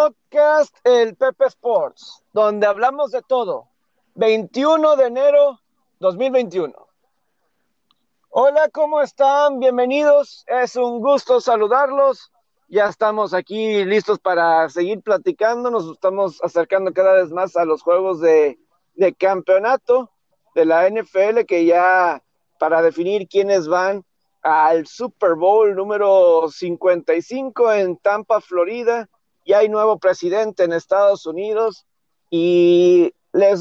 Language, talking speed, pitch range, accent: Spanish, 115 wpm, 175-240 Hz, Mexican